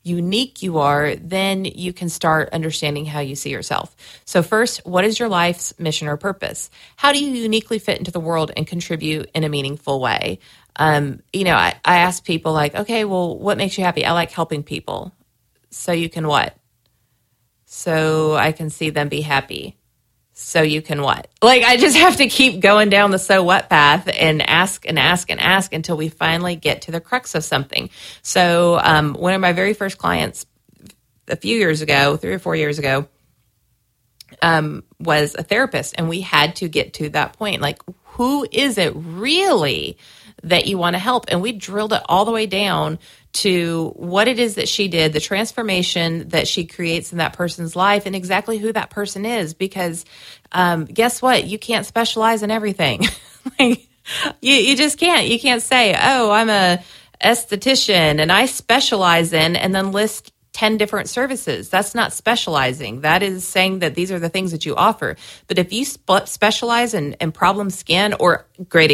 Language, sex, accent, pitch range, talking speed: English, female, American, 155-210 Hz, 190 wpm